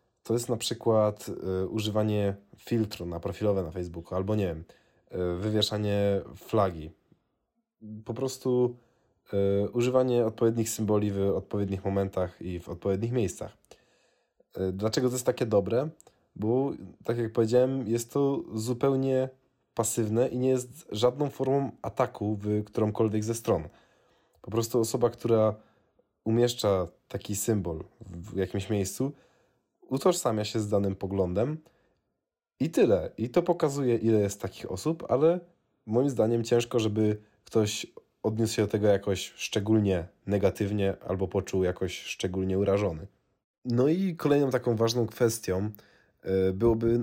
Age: 20-39